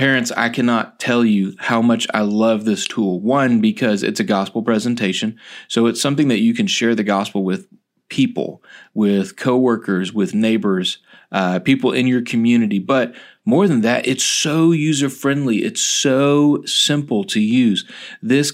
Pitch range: 110-140 Hz